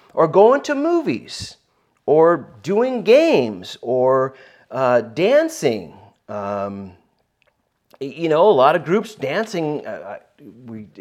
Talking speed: 105 wpm